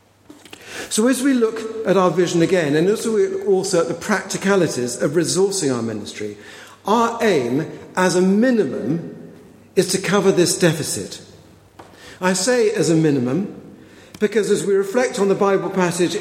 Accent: British